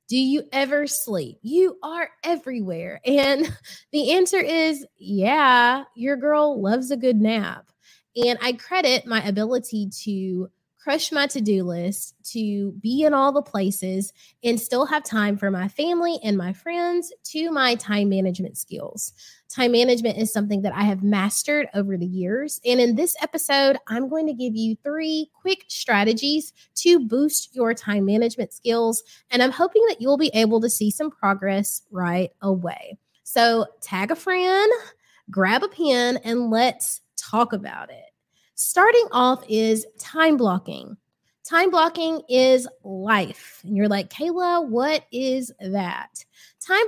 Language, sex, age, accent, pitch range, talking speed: English, female, 20-39, American, 205-290 Hz, 155 wpm